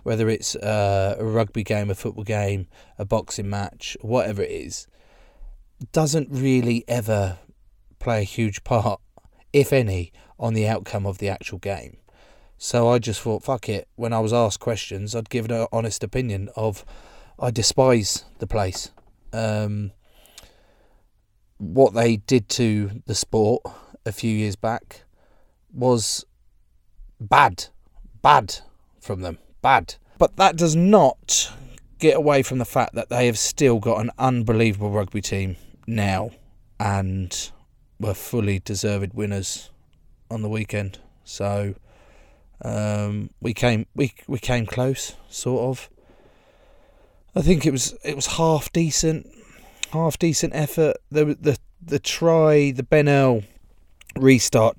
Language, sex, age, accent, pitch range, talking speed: English, male, 30-49, British, 100-125 Hz, 135 wpm